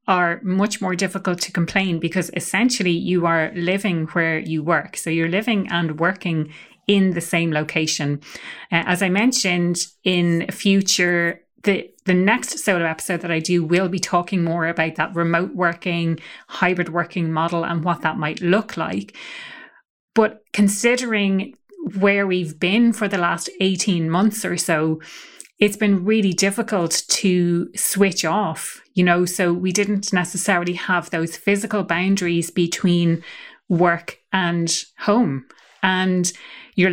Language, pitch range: English, 170-195 Hz